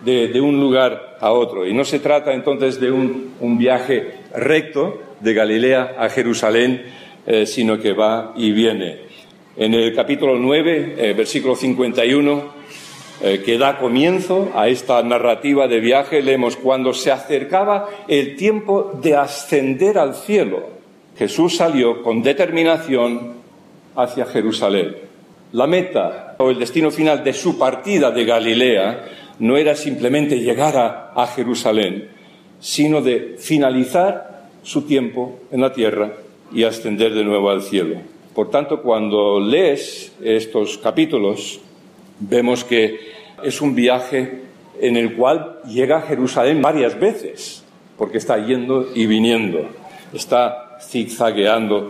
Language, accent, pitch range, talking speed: English, Spanish, 115-145 Hz, 135 wpm